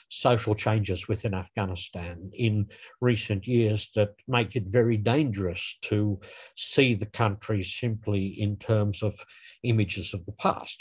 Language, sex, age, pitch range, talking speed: English, male, 60-79, 105-130 Hz, 135 wpm